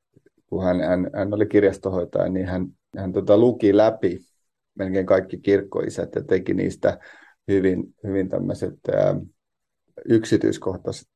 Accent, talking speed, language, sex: native, 120 wpm, Finnish, male